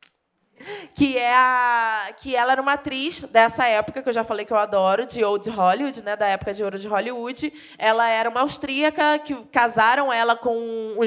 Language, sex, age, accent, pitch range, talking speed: English, female, 20-39, Brazilian, 235-290 Hz, 180 wpm